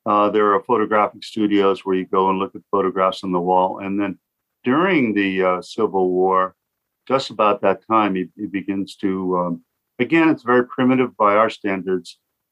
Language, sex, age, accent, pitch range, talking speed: English, male, 50-69, American, 95-110 Hz, 175 wpm